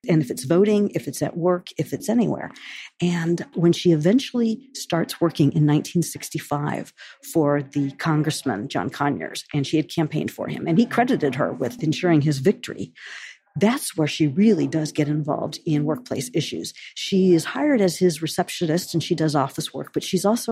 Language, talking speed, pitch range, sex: English, 180 wpm, 150-190 Hz, female